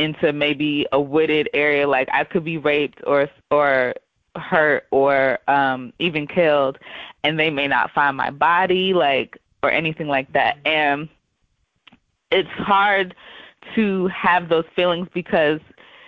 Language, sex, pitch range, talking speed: English, female, 145-180 Hz, 140 wpm